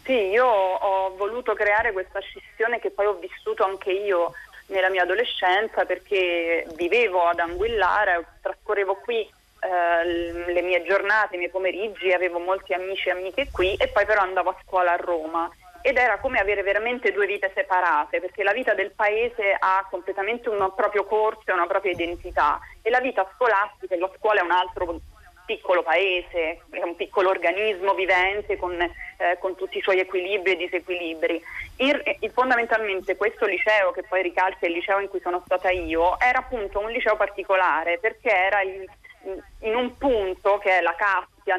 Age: 30-49